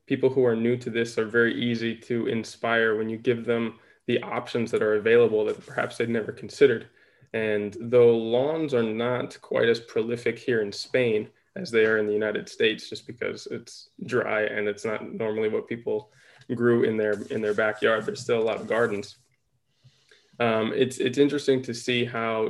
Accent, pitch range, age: American, 115-135 Hz, 20-39